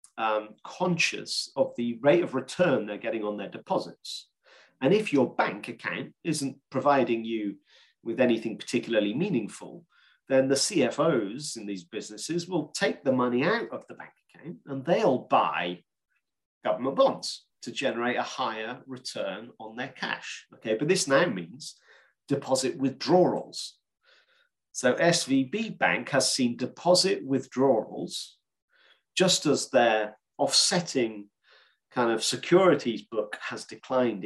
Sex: male